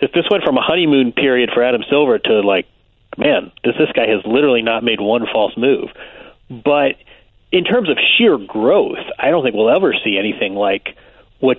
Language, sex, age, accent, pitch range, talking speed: English, male, 40-59, American, 120-160 Hz, 195 wpm